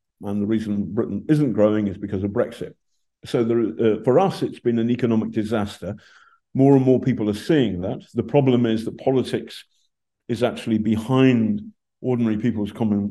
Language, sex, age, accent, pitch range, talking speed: English, male, 50-69, British, 105-130 Hz, 175 wpm